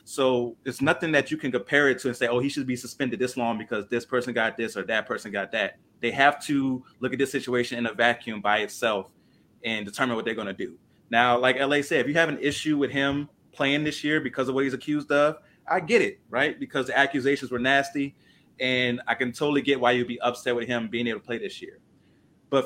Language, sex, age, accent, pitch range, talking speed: English, male, 30-49, American, 120-145 Hz, 250 wpm